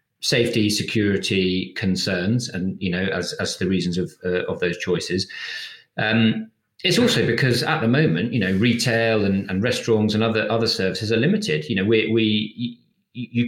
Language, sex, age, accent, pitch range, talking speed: English, male, 40-59, British, 100-125 Hz, 175 wpm